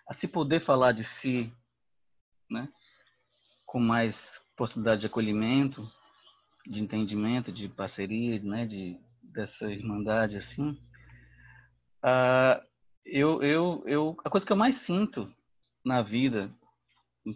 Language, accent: Portuguese, Brazilian